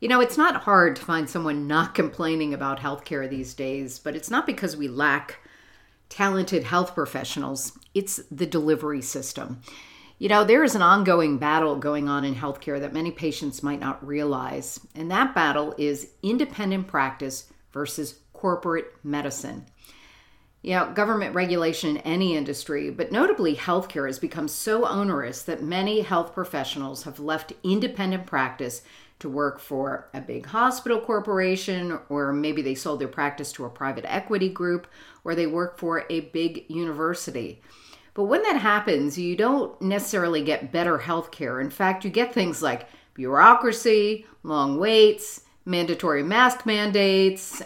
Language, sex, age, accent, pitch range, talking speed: English, female, 50-69, American, 145-190 Hz, 155 wpm